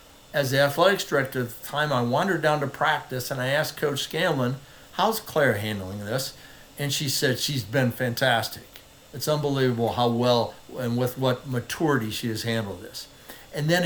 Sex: male